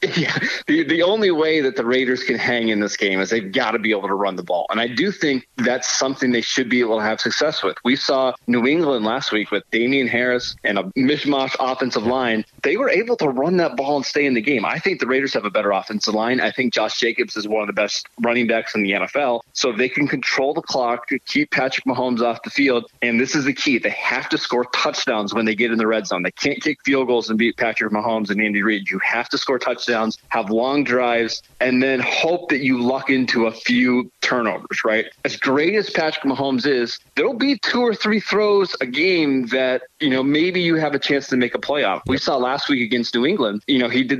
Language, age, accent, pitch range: English, 30-49, American, 115-140 Hz